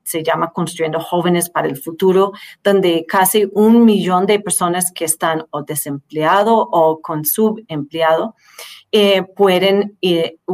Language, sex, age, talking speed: Spanish, female, 40-59, 130 wpm